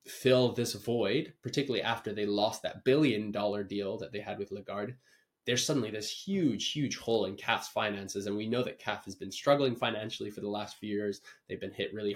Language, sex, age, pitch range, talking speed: English, male, 20-39, 105-125 Hz, 210 wpm